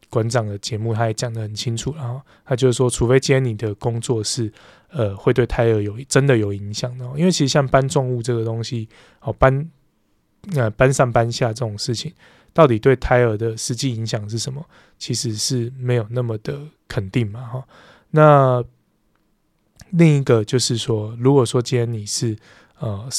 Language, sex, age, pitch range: Chinese, male, 20-39, 110-130 Hz